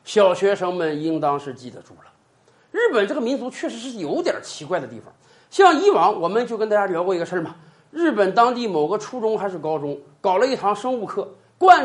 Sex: male